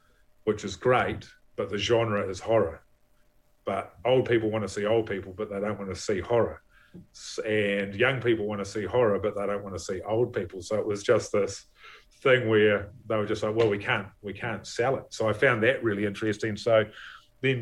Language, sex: English, male